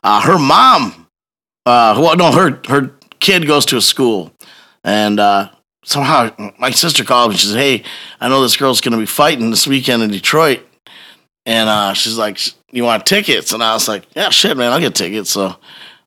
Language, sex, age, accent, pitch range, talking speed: English, male, 30-49, American, 105-135 Hz, 200 wpm